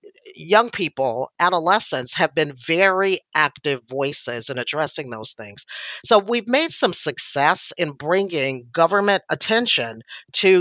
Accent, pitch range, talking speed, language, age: American, 140-190 Hz, 125 wpm, English, 50-69